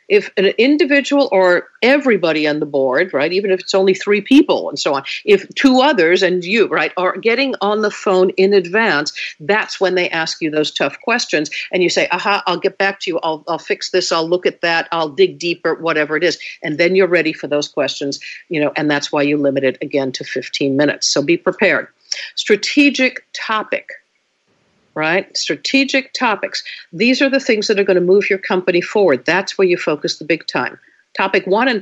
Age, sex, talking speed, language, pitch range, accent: 50-69, female, 210 wpm, English, 165-215 Hz, American